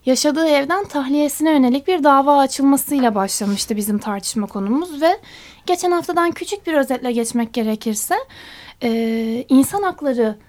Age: 10-29